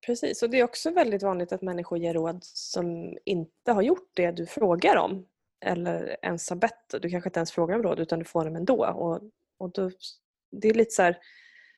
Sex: female